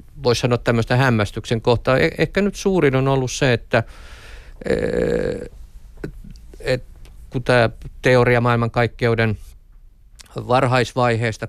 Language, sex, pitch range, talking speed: Finnish, male, 105-125 Hz, 95 wpm